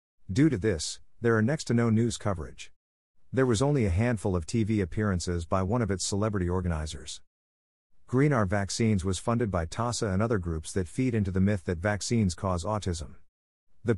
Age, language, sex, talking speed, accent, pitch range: 50-69, English, male, 185 wpm, American, 90-115 Hz